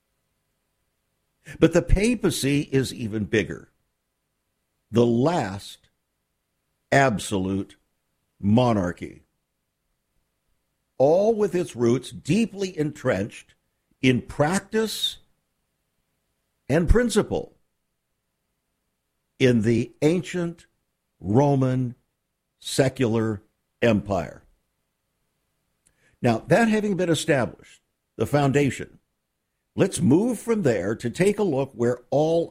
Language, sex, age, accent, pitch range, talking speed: English, male, 60-79, American, 110-160 Hz, 80 wpm